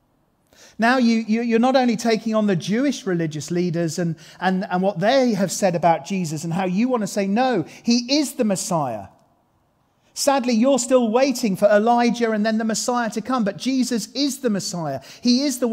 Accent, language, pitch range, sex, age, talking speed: British, English, 190-240 Hz, male, 40-59, 200 wpm